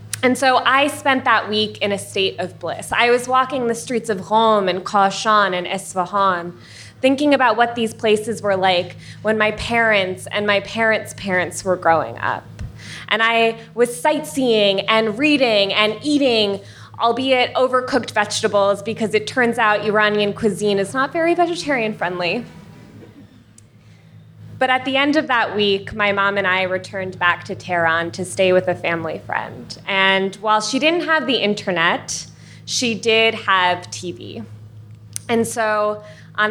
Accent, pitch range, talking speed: American, 180-230 Hz, 160 wpm